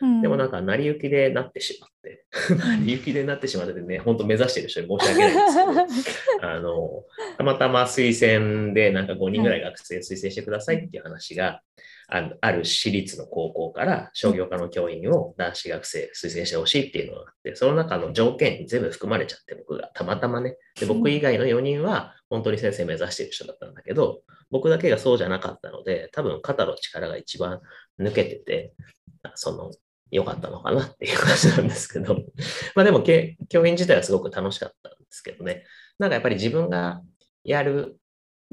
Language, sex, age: Japanese, male, 30-49